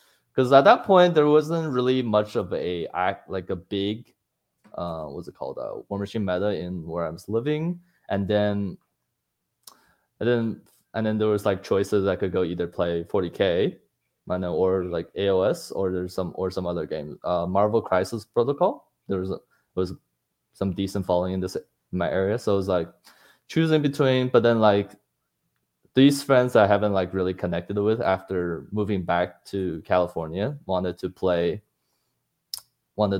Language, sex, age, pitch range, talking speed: English, male, 20-39, 95-115 Hz, 175 wpm